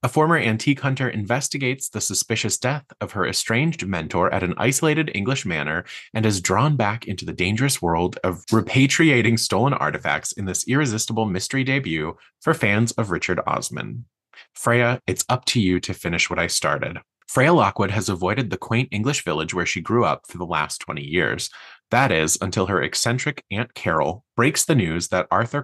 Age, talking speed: 20-39, 185 wpm